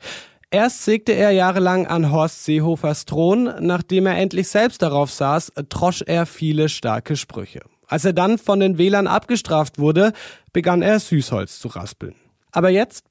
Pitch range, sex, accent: 150-190 Hz, male, German